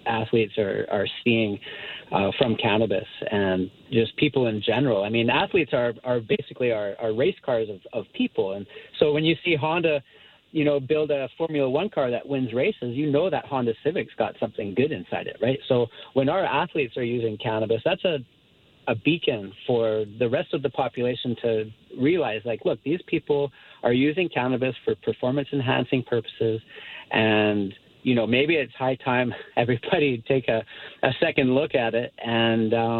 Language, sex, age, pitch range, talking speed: English, male, 30-49, 115-140 Hz, 175 wpm